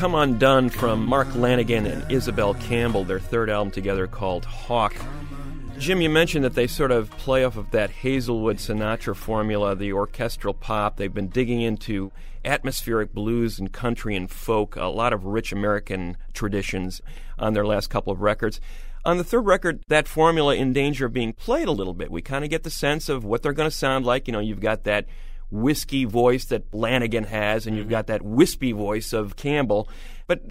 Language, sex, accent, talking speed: English, male, American, 195 wpm